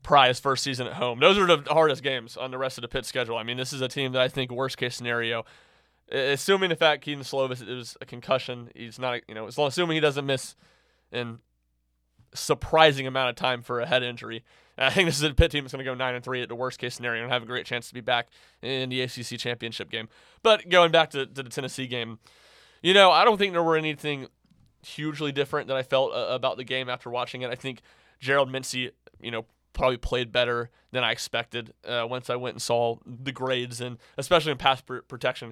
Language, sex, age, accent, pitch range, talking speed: English, male, 20-39, American, 120-135 Hz, 230 wpm